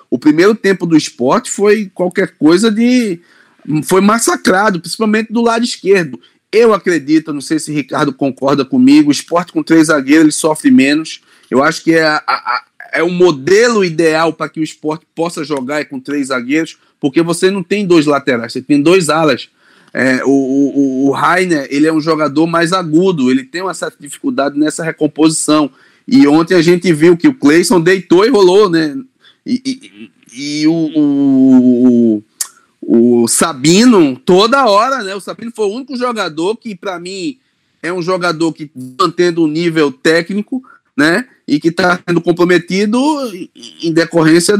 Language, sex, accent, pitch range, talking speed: Portuguese, male, Brazilian, 150-220 Hz, 170 wpm